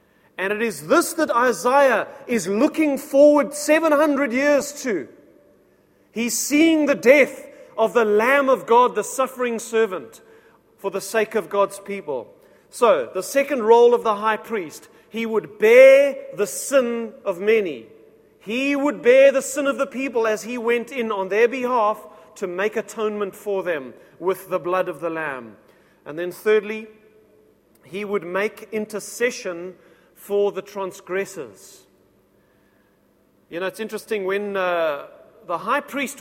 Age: 40-59